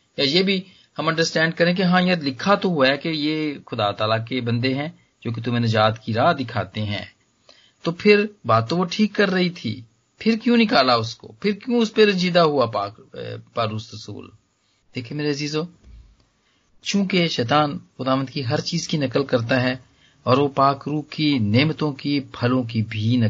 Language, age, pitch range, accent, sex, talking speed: English, 40-59, 115-180 Hz, Indian, male, 175 wpm